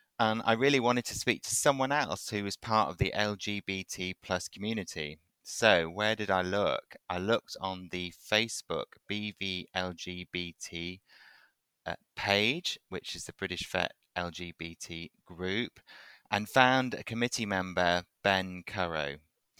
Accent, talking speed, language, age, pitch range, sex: British, 130 wpm, English, 30-49, 95-120 Hz, male